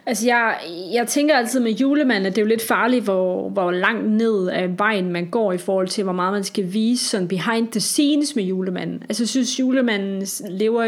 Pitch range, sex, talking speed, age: 195-235 Hz, female, 220 wpm, 30-49